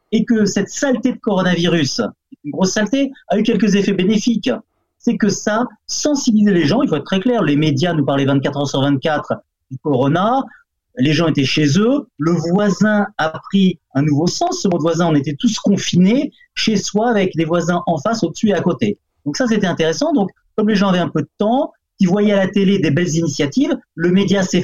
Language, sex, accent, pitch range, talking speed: French, male, French, 150-215 Hz, 220 wpm